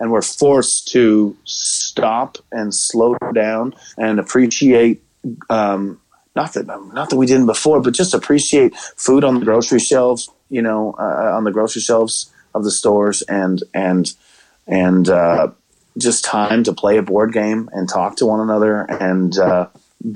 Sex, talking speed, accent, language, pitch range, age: male, 155 wpm, American, English, 95-120 Hz, 30-49